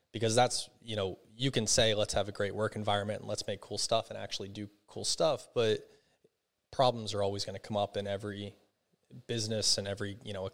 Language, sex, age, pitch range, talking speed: English, male, 20-39, 95-110 Hz, 220 wpm